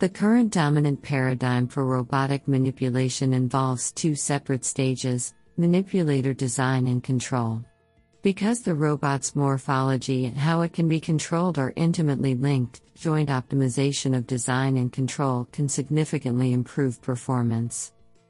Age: 50-69